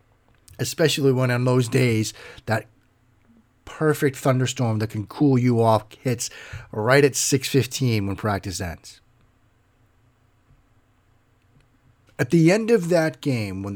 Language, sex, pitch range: English, male, 110-135 Hz